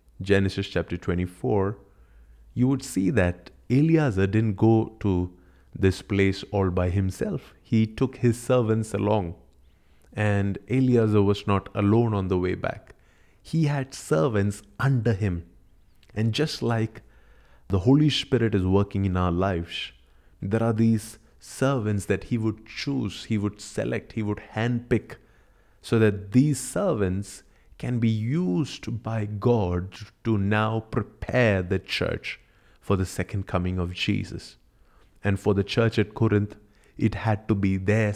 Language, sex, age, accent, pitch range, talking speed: English, male, 30-49, Indian, 95-115 Hz, 145 wpm